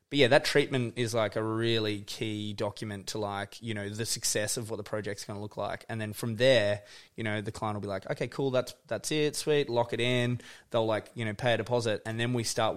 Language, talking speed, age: English, 260 wpm, 20-39